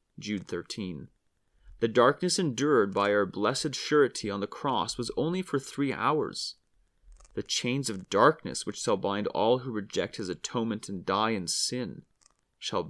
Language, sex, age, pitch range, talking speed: English, male, 30-49, 105-145 Hz, 160 wpm